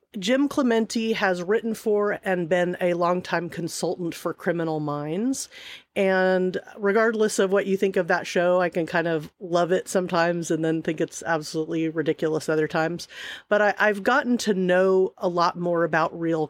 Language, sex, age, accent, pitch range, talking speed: English, female, 40-59, American, 160-195 Hz, 175 wpm